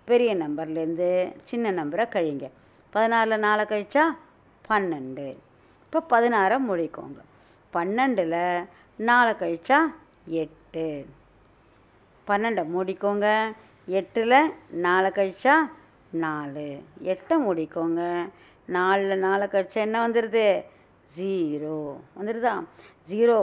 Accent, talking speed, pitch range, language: native, 80 wpm, 170-230 Hz, Tamil